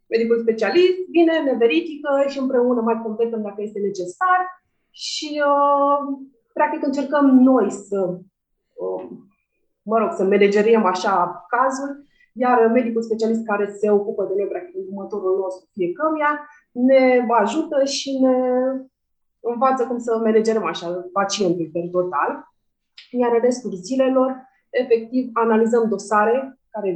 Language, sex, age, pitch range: Romanian, female, 30-49, 200-260 Hz